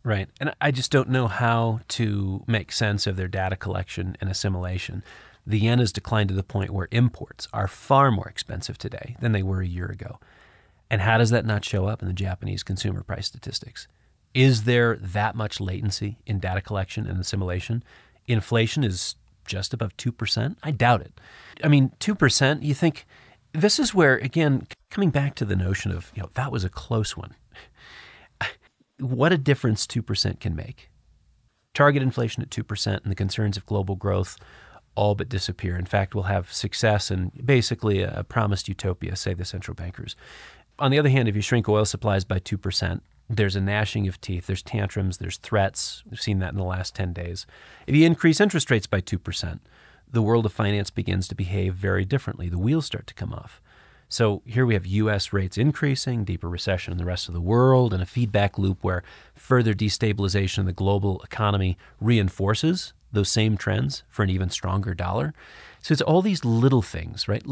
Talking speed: 190 wpm